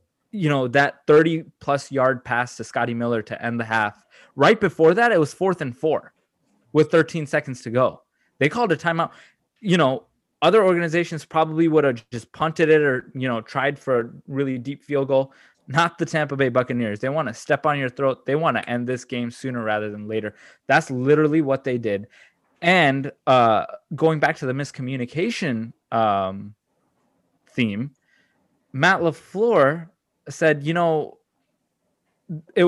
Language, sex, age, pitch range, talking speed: English, male, 20-39, 125-160 Hz, 170 wpm